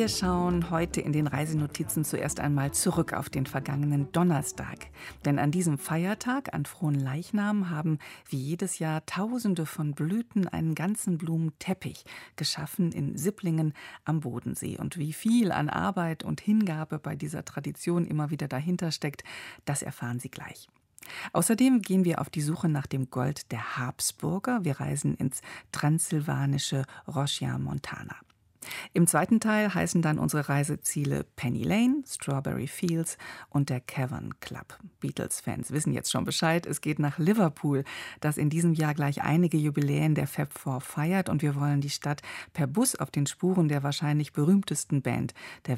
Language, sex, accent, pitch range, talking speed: German, female, German, 140-170 Hz, 155 wpm